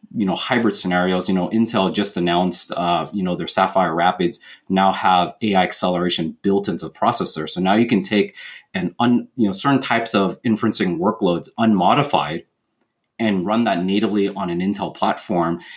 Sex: male